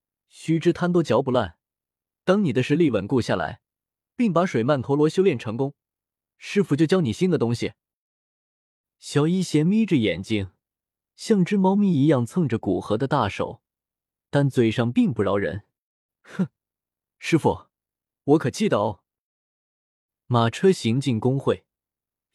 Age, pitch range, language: 20-39, 115-170 Hz, Chinese